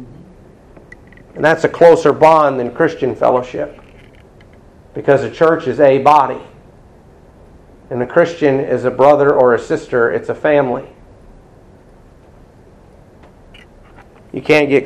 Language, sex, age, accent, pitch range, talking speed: English, male, 50-69, American, 120-160 Hz, 115 wpm